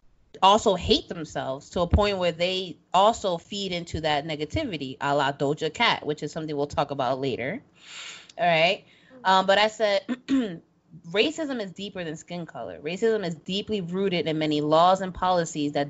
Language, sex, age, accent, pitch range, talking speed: English, female, 20-39, American, 160-205 Hz, 175 wpm